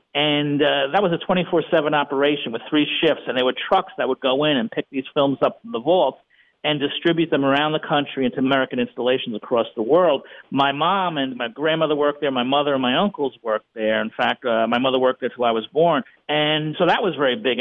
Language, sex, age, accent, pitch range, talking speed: English, male, 50-69, American, 130-170 Hz, 235 wpm